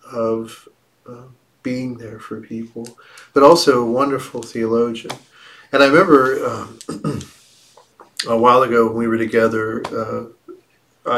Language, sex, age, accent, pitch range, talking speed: English, male, 40-59, American, 115-125 Hz, 125 wpm